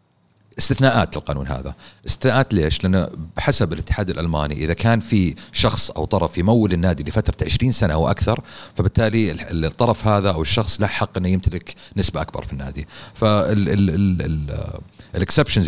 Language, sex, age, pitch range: Arabic, male, 40-59, 80-105 Hz